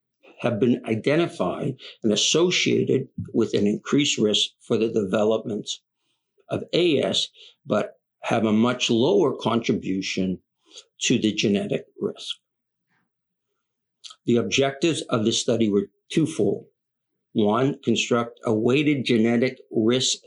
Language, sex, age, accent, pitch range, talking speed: English, male, 60-79, American, 110-140 Hz, 110 wpm